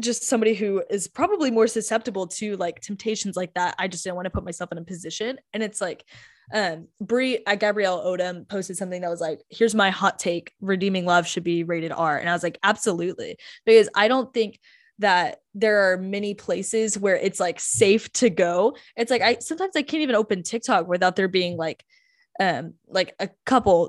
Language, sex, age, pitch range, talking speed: English, female, 10-29, 185-240 Hz, 205 wpm